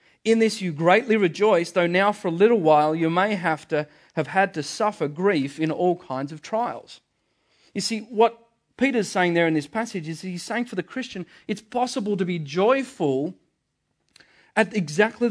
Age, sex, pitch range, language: 40-59, male, 150-210 Hz, English